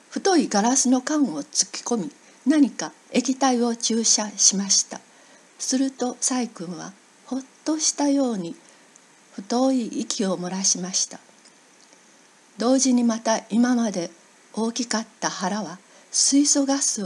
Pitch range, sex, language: 205-260 Hz, female, Japanese